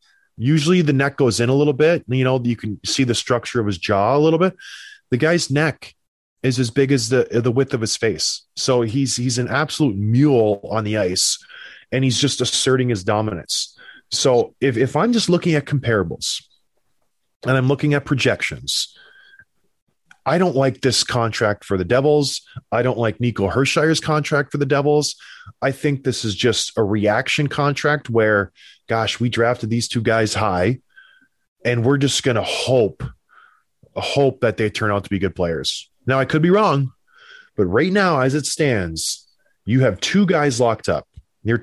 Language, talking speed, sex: English, 185 wpm, male